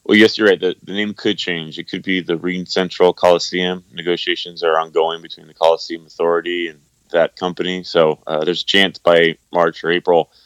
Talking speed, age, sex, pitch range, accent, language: 200 wpm, 20-39, male, 85-95 Hz, American, English